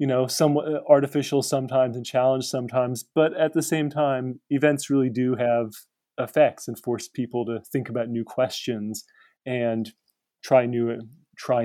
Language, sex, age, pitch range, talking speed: English, male, 30-49, 115-140 Hz, 145 wpm